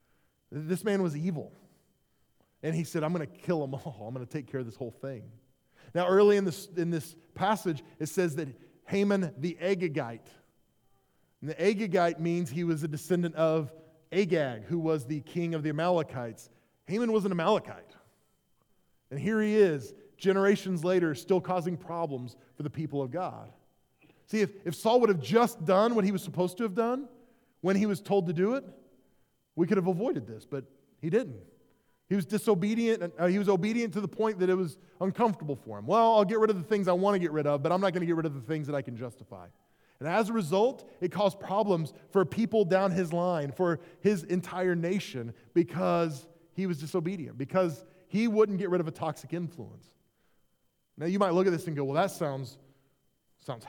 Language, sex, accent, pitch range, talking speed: English, male, American, 150-195 Hz, 200 wpm